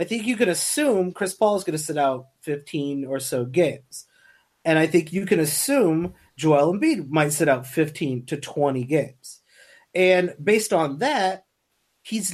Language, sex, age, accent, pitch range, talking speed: English, male, 30-49, American, 140-180 Hz, 175 wpm